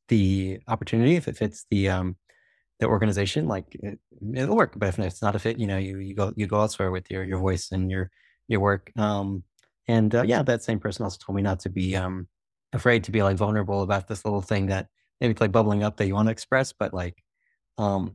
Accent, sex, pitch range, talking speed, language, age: American, male, 95-120 Hz, 240 wpm, English, 20-39